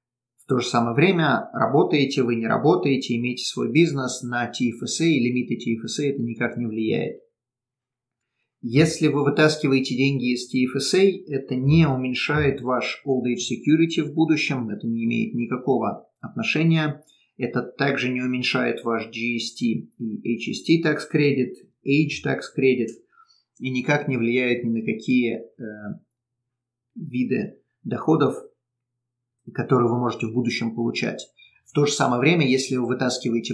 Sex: male